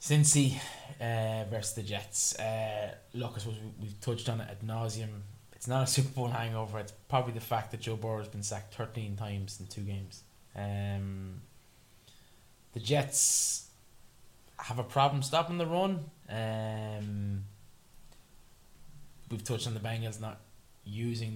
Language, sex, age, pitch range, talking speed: English, male, 20-39, 105-125 Hz, 150 wpm